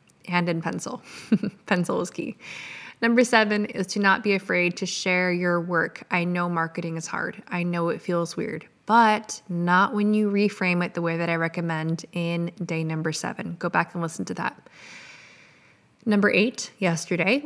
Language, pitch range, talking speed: English, 175-235 Hz, 175 wpm